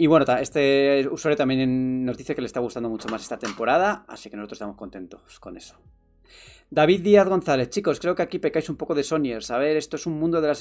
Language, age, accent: Spanish, 20-39, Spanish